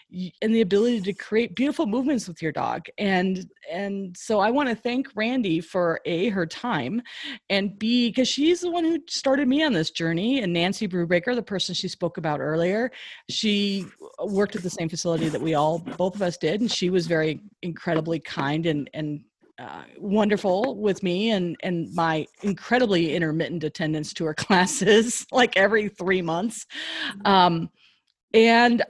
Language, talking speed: English, 170 wpm